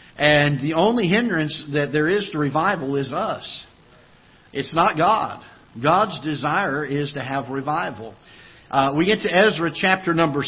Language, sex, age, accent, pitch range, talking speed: English, male, 50-69, American, 135-155 Hz, 155 wpm